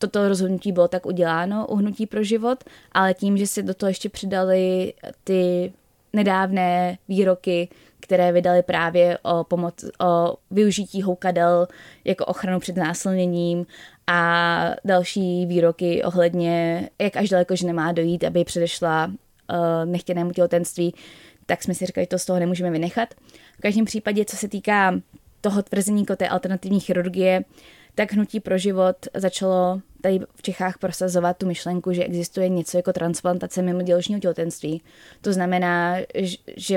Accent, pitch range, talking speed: native, 175-205 Hz, 145 wpm